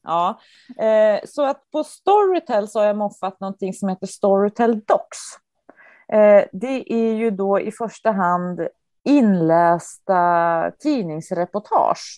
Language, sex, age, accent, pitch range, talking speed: English, female, 30-49, Swedish, 165-220 Hz, 115 wpm